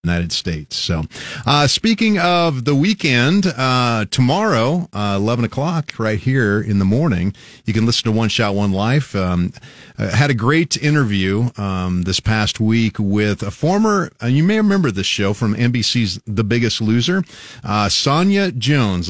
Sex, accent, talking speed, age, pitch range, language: male, American, 165 wpm, 40-59, 100-130 Hz, English